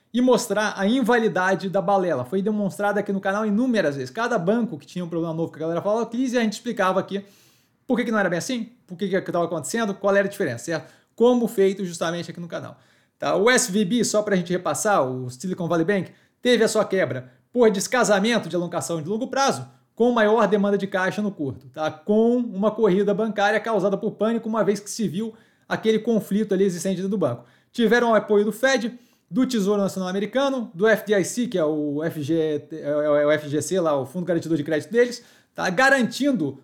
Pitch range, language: 175-220 Hz, Portuguese